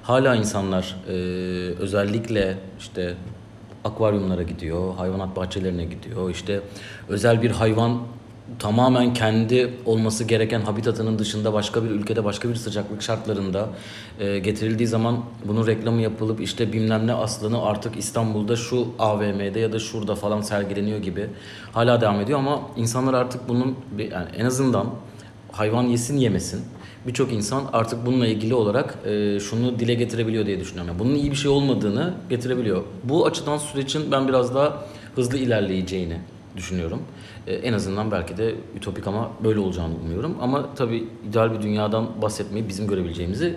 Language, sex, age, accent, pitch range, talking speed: Turkish, male, 40-59, native, 100-120 Hz, 145 wpm